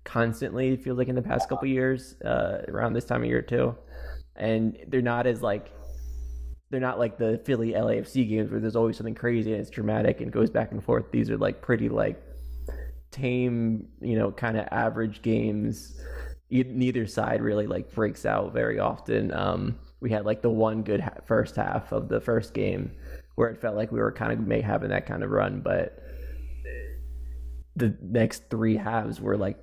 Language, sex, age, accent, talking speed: English, male, 20-39, American, 190 wpm